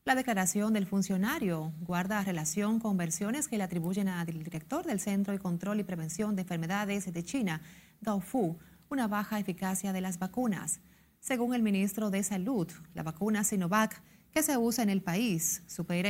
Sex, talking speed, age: female, 170 wpm, 30-49